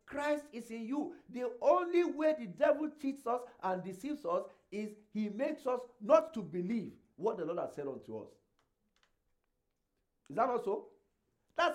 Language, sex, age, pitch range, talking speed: English, male, 50-69, 180-260 Hz, 165 wpm